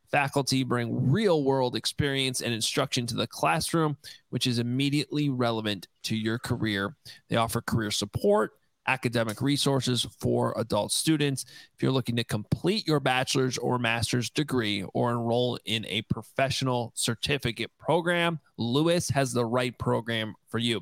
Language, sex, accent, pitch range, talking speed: English, male, American, 115-140 Hz, 145 wpm